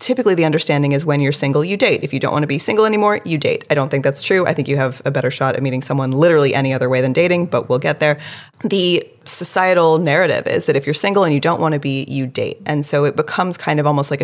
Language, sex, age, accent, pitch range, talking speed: English, female, 20-39, American, 135-170 Hz, 285 wpm